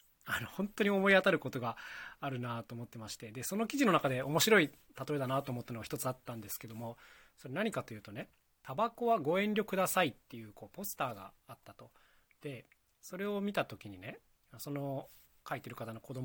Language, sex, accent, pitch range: Japanese, male, native, 120-180 Hz